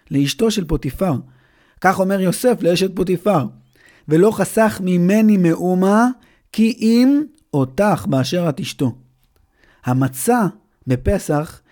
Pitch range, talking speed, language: 145-205 Hz, 100 wpm, Hebrew